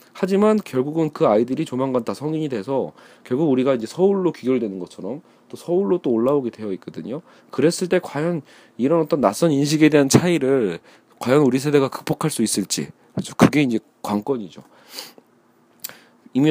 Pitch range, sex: 115-165 Hz, male